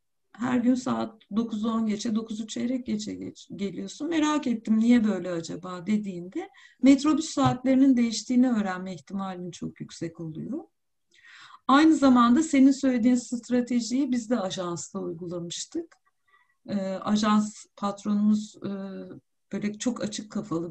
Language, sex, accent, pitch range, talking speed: Turkish, female, native, 185-250 Hz, 110 wpm